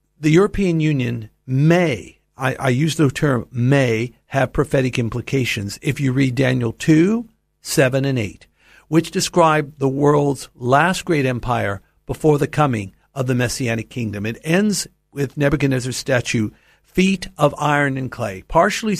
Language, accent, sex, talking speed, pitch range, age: English, American, male, 145 wpm, 125-160 Hz, 60-79